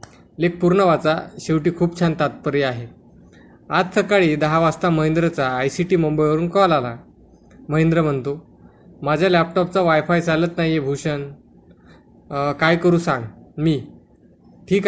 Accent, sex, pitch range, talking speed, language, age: native, male, 145-170 Hz, 125 wpm, Marathi, 20-39